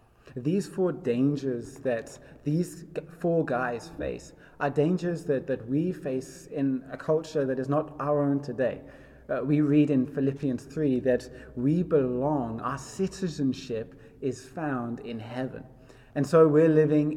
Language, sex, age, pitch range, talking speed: English, male, 20-39, 125-150 Hz, 145 wpm